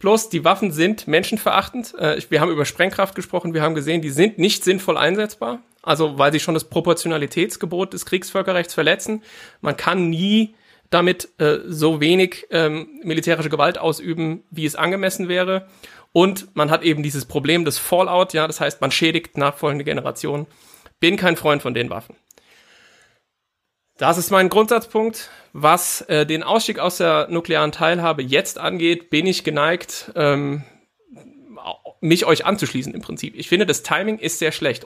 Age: 40-59